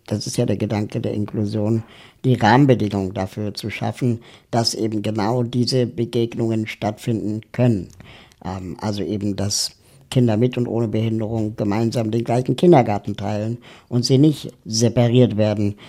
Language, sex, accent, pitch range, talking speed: German, male, German, 105-120 Hz, 145 wpm